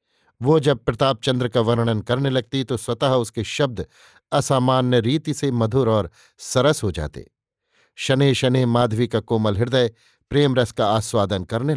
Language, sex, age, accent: Hindi, male, 50-69, native